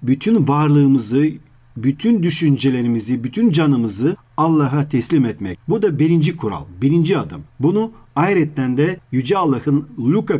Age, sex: 40-59, male